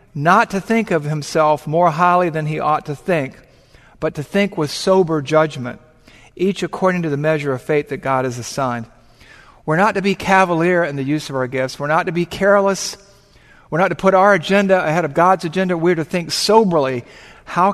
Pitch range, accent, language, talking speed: 140-185 Hz, American, English, 205 wpm